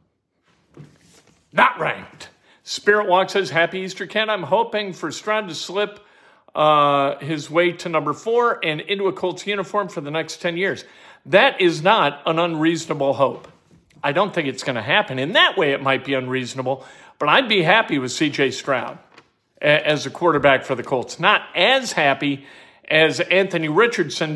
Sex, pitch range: male, 145-195 Hz